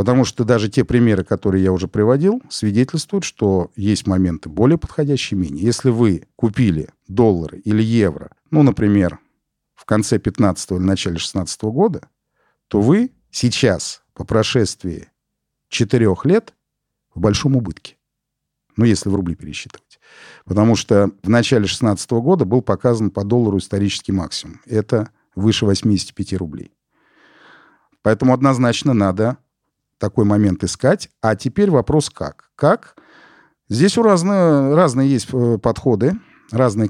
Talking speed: 125 wpm